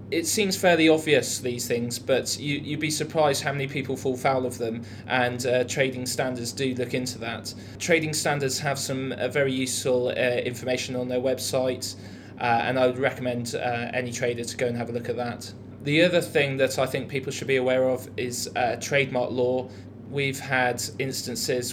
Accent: British